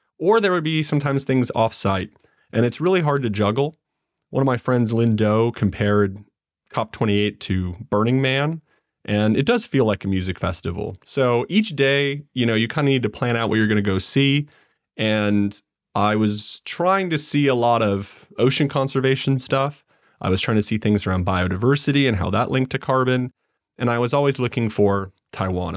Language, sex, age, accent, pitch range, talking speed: English, male, 30-49, American, 105-145 Hz, 195 wpm